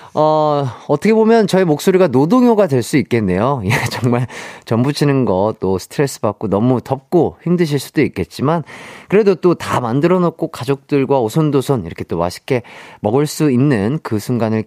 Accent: native